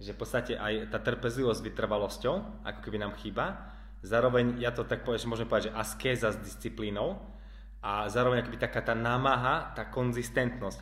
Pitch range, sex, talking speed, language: 105-125 Hz, male, 185 wpm, Slovak